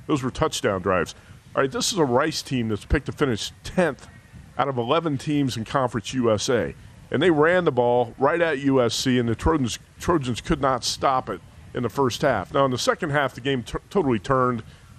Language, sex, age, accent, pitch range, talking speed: English, male, 50-69, American, 110-140 Hz, 210 wpm